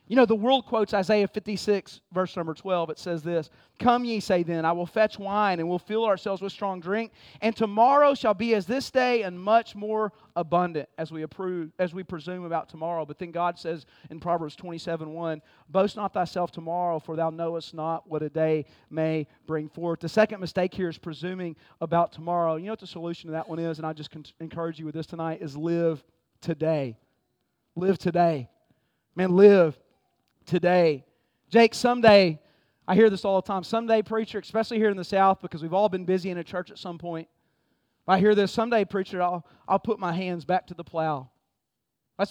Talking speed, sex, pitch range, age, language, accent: 205 wpm, male, 165-225 Hz, 40-59, English, American